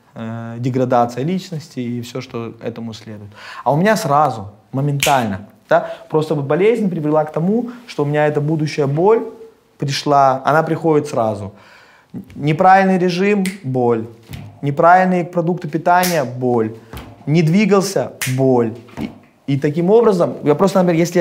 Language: Russian